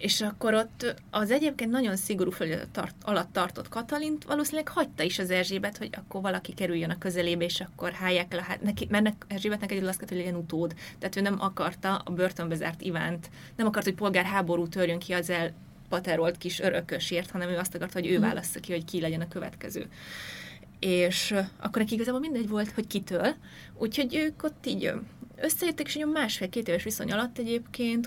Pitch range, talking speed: 175-215 Hz, 180 wpm